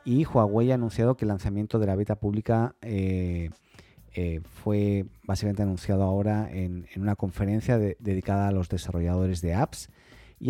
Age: 40-59